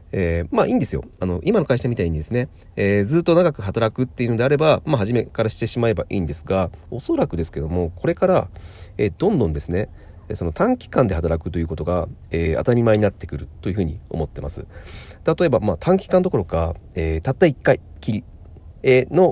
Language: Japanese